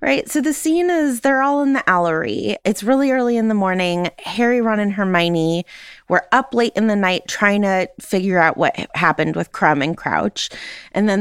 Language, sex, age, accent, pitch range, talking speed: English, female, 20-39, American, 190-275 Hz, 205 wpm